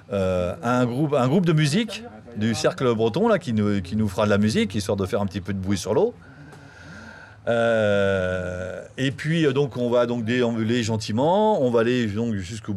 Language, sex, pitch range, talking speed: French, male, 100-140 Hz, 200 wpm